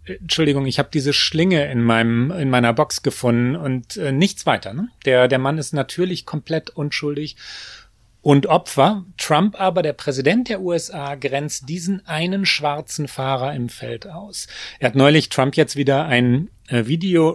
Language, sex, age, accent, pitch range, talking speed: German, male, 30-49, German, 125-165 Hz, 165 wpm